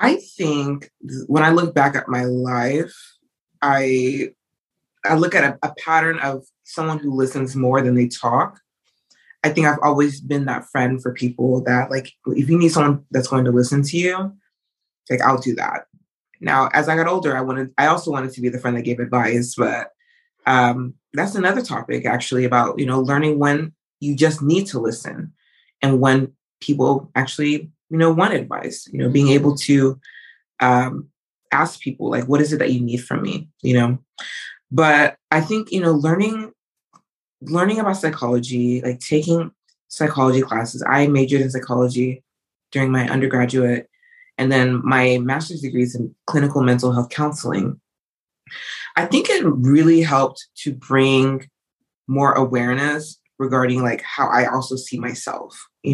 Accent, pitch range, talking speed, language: American, 125-155 Hz, 165 wpm, English